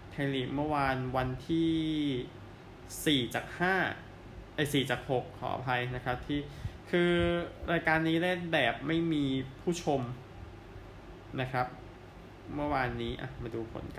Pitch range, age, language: 120-150 Hz, 20-39, Thai